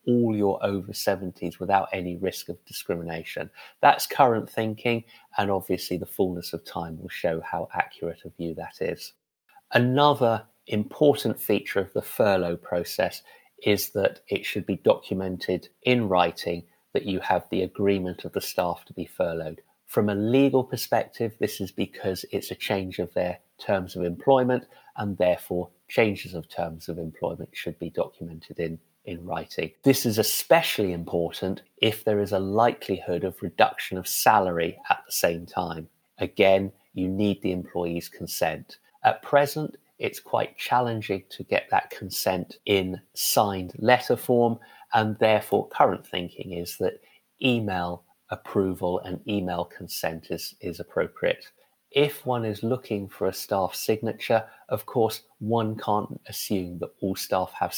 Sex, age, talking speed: male, 30-49, 155 wpm